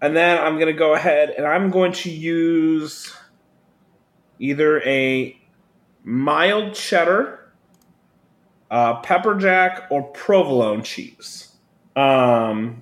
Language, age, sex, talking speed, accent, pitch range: English, 30-49, male, 110 wpm, American, 140-180 Hz